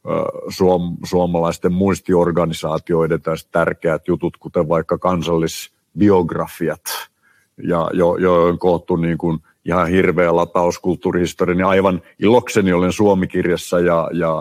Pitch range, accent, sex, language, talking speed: 90-115 Hz, native, male, Finnish, 95 wpm